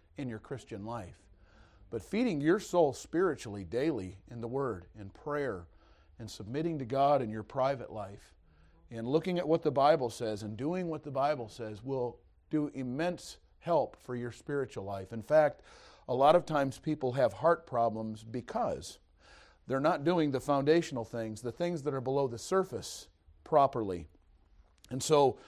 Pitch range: 115-175 Hz